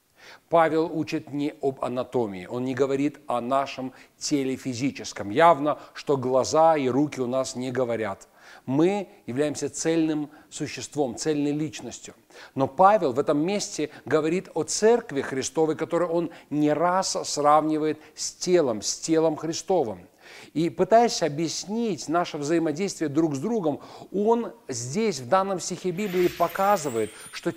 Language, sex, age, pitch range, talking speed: Russian, male, 40-59, 140-185 Hz, 135 wpm